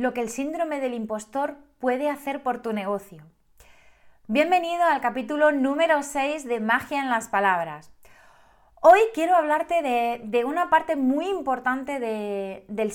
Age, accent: 20-39, Spanish